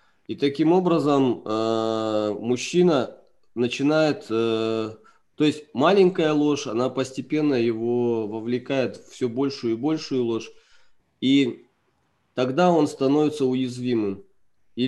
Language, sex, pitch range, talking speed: Russian, male, 110-150 Hz, 100 wpm